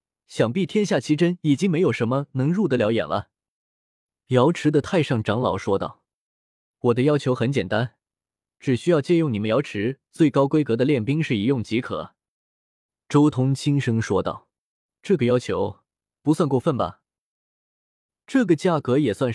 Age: 20-39